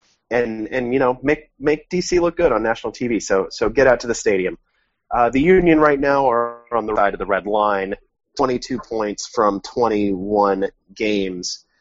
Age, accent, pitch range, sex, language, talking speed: 30-49, American, 100-140 Hz, male, English, 190 wpm